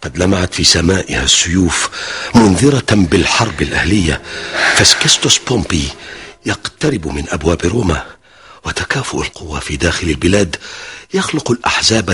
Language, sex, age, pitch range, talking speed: Arabic, male, 50-69, 80-110 Hz, 105 wpm